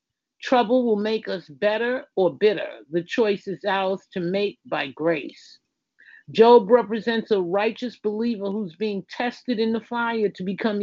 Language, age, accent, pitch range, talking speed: English, 50-69, American, 165-215 Hz, 155 wpm